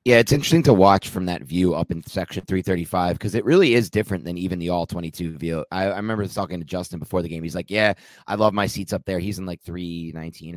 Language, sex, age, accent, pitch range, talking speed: English, male, 30-49, American, 90-120 Hz, 255 wpm